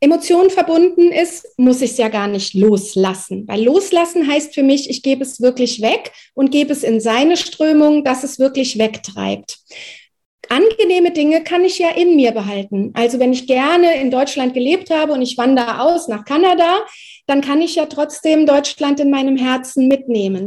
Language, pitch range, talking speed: German, 230-315 Hz, 180 wpm